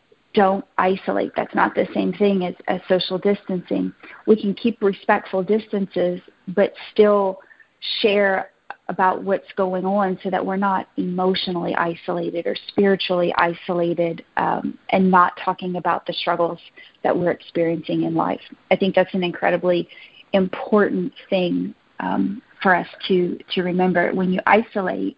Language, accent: English, American